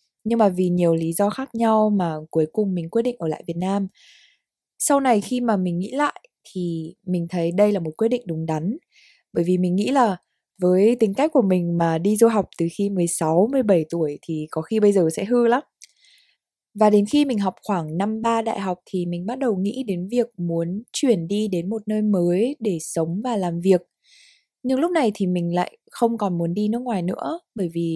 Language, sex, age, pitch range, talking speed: Vietnamese, female, 20-39, 175-235 Hz, 225 wpm